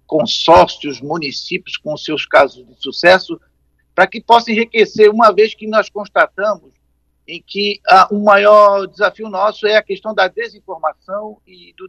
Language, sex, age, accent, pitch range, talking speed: Portuguese, male, 50-69, Brazilian, 175-225 Hz, 150 wpm